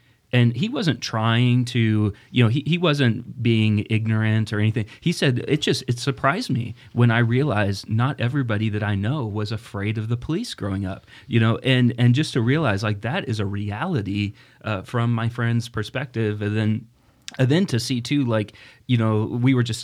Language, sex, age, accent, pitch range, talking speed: English, male, 30-49, American, 110-130 Hz, 200 wpm